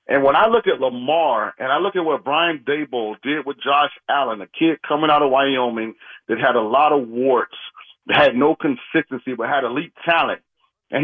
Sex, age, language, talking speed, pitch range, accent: male, 40-59, English, 205 wpm, 145-195 Hz, American